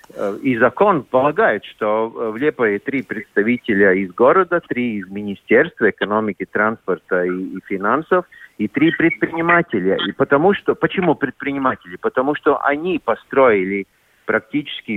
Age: 50-69